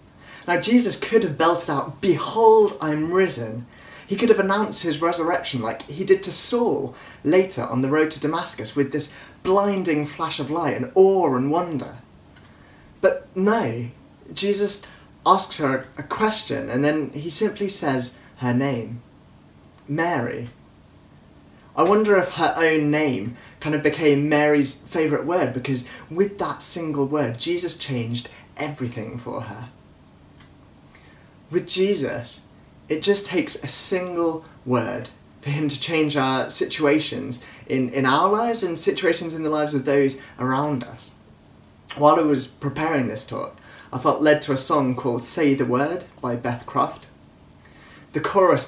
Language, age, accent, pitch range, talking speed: English, 20-39, British, 125-170 Hz, 150 wpm